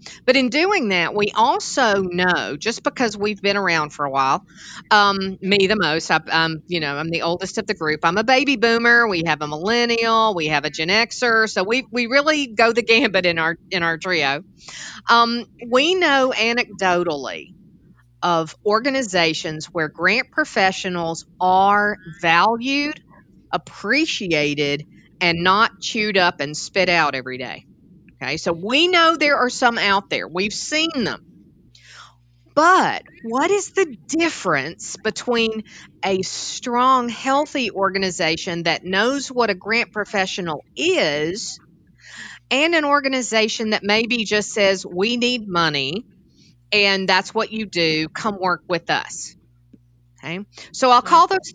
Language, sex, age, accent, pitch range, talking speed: English, female, 50-69, American, 170-235 Hz, 150 wpm